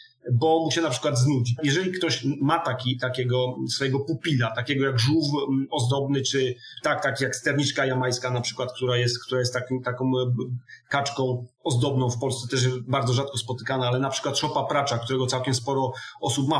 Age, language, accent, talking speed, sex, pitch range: 30-49, Polish, native, 180 wpm, male, 130-175 Hz